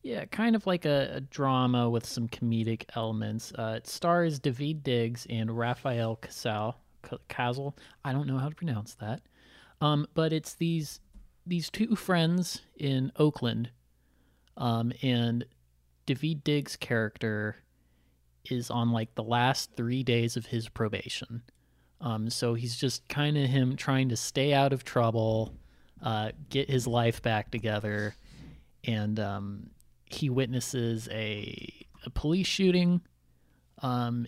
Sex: male